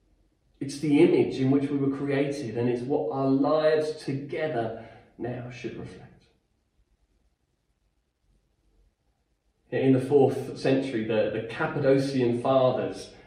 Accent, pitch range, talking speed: British, 120-140 Hz, 115 wpm